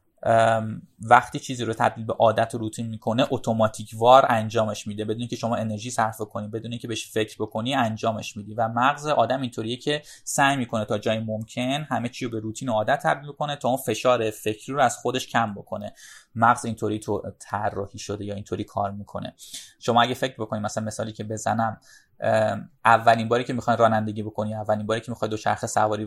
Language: Persian